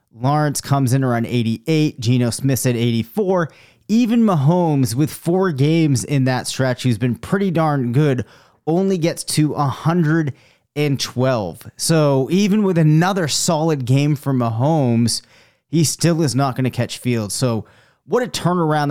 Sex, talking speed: male, 145 wpm